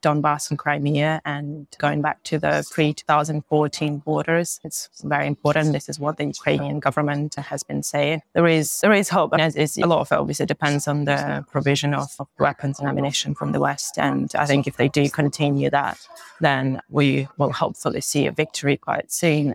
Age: 20-39